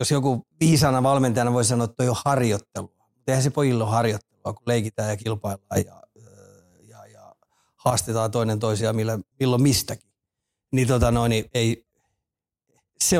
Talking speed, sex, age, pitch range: 135 wpm, male, 30-49, 110-130 Hz